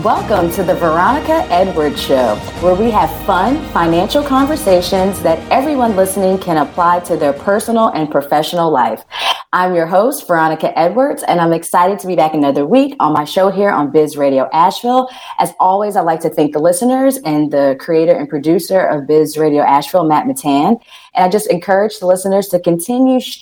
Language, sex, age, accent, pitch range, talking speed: English, female, 30-49, American, 155-220 Hz, 180 wpm